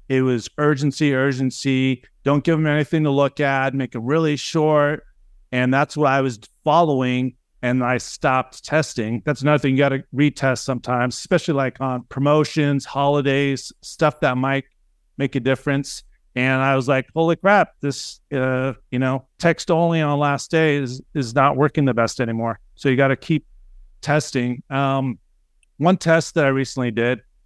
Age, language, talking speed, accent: 40-59, English, 175 wpm, American